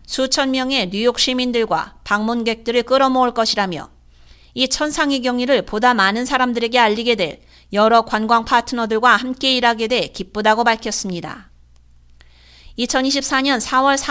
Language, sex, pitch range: Korean, female, 205-255 Hz